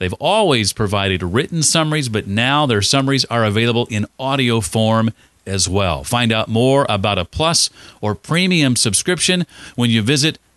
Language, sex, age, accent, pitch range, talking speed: English, male, 40-59, American, 105-140 Hz, 160 wpm